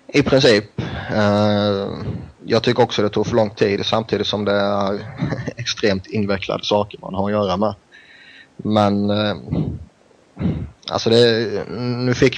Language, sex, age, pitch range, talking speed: Swedish, male, 30-49, 100-115 Hz, 145 wpm